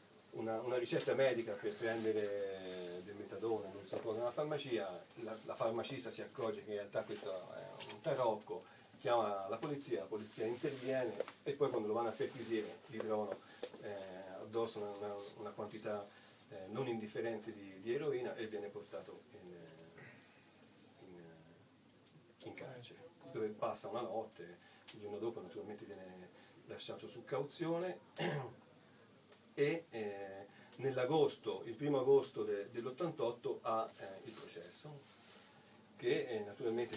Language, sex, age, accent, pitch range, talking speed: Italian, male, 40-59, native, 100-135 Hz, 135 wpm